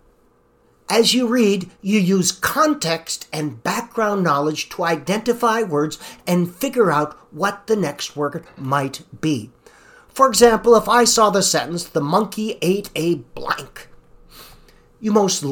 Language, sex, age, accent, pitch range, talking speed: English, male, 50-69, American, 145-225 Hz, 135 wpm